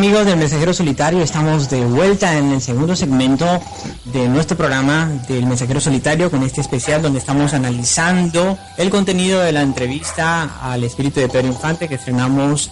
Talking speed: 165 wpm